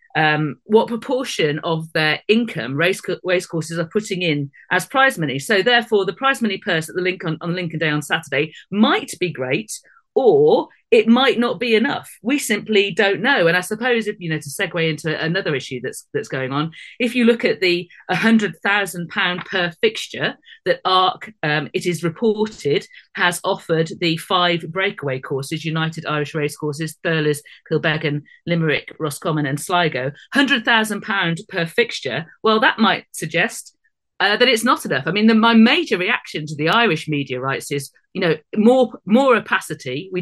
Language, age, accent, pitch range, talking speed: English, 40-59, British, 155-220 Hz, 175 wpm